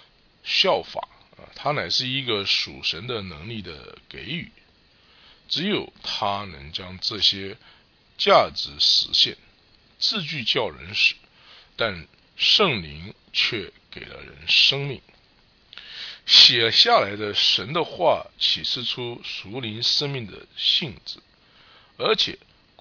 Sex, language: male, English